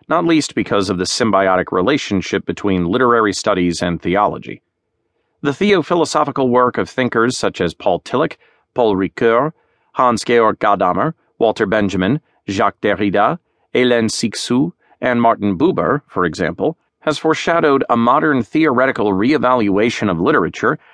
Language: English